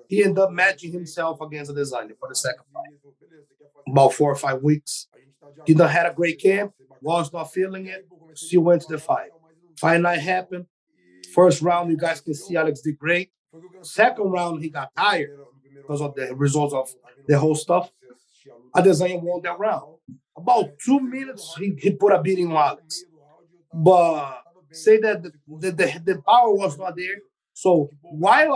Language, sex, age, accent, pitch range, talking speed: English, male, 30-49, Brazilian, 155-190 Hz, 180 wpm